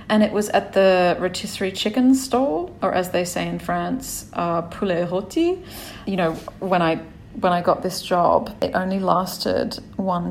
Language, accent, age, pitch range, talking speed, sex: English, Australian, 30-49, 175-220 Hz, 175 wpm, female